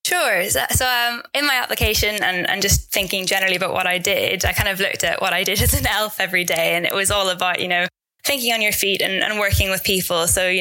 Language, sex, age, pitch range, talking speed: English, female, 10-29, 175-195 Hz, 260 wpm